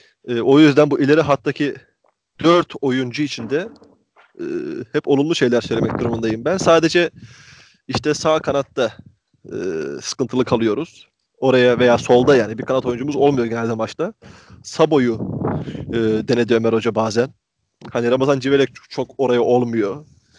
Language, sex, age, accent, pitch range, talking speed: Turkish, male, 30-49, native, 125-155 Hz, 135 wpm